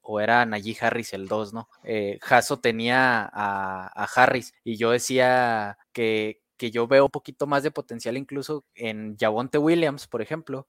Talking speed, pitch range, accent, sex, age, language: 175 wpm, 115-135 Hz, Mexican, male, 20-39, Spanish